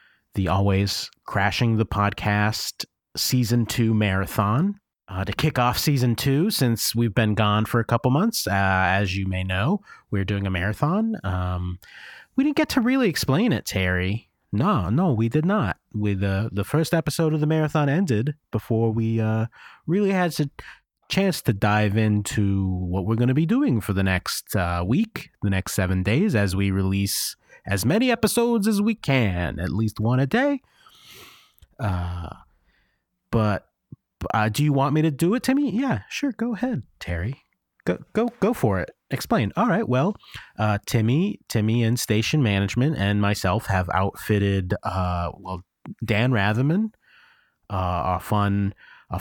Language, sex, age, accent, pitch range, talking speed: English, male, 30-49, American, 100-150 Hz, 165 wpm